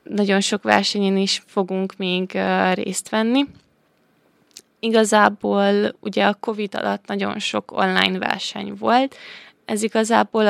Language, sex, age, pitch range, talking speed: Hungarian, female, 20-39, 190-235 Hz, 115 wpm